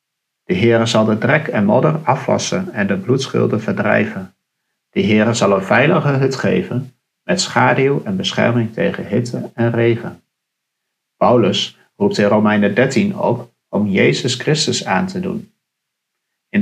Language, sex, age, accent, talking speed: Dutch, male, 50-69, Dutch, 145 wpm